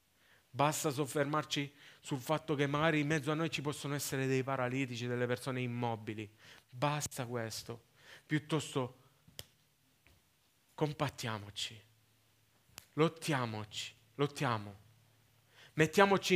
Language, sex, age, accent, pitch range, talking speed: Italian, male, 30-49, native, 115-160 Hz, 90 wpm